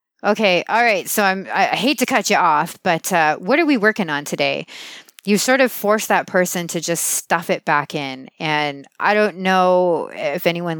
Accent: American